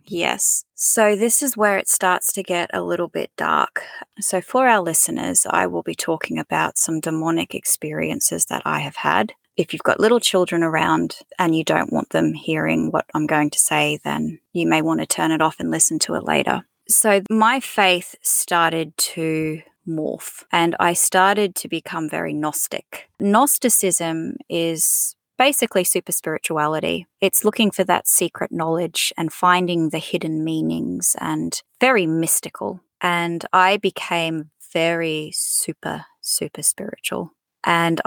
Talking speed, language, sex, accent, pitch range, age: 155 wpm, English, female, Australian, 160-200 Hz, 20-39